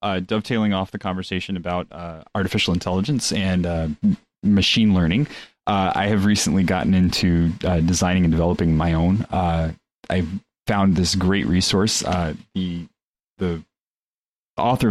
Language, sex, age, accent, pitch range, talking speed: English, male, 30-49, American, 85-100 Hz, 140 wpm